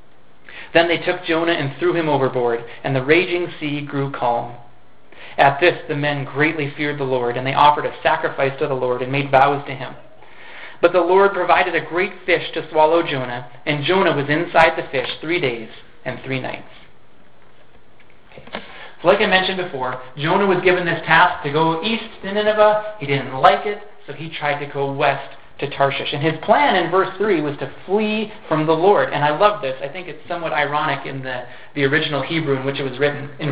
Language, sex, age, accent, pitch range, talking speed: English, male, 40-59, American, 135-175 Hz, 205 wpm